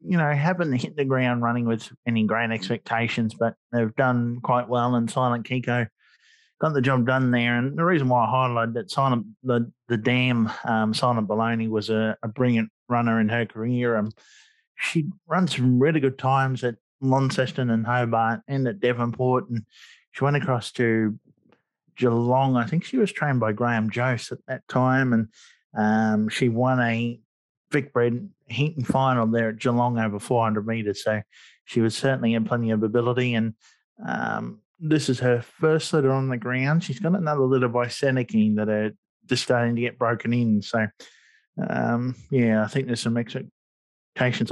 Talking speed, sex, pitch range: 180 wpm, male, 115-130 Hz